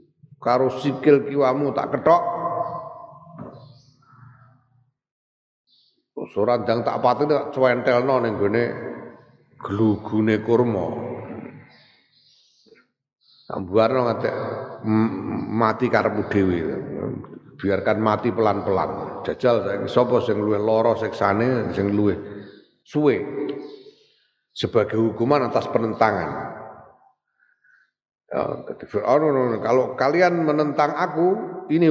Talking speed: 85 wpm